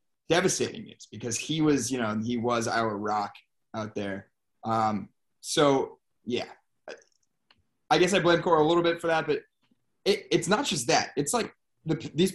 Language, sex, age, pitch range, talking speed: English, male, 20-39, 130-200 Hz, 170 wpm